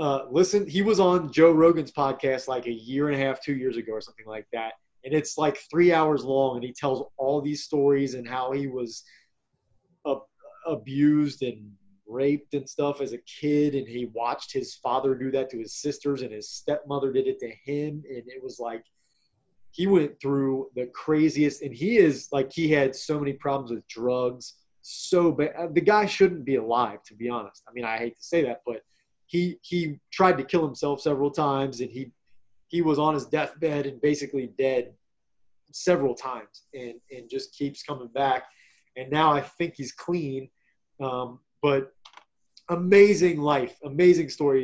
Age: 20-39